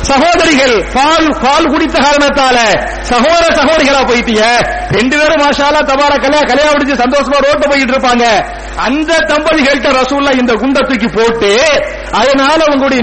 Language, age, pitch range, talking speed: English, 50-69, 230-285 Hz, 125 wpm